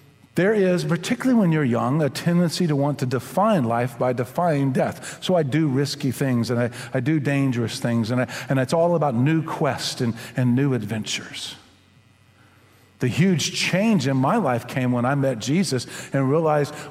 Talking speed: 185 wpm